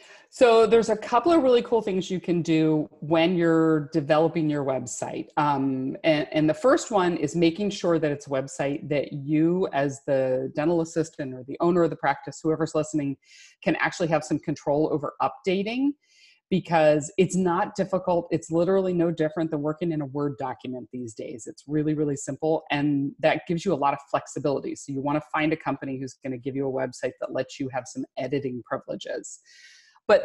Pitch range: 150-200 Hz